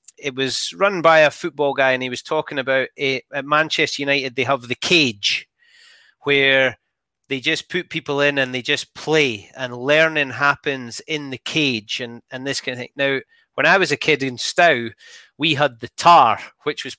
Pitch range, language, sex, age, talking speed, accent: 130-155 Hz, English, male, 30-49, 200 wpm, British